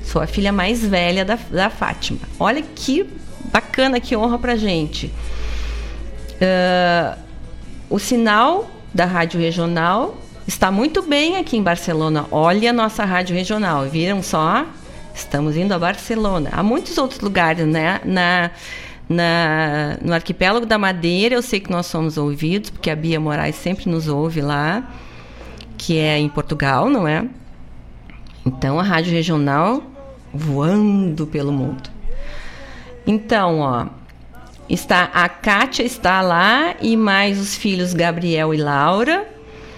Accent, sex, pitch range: Brazilian, female, 150-210 Hz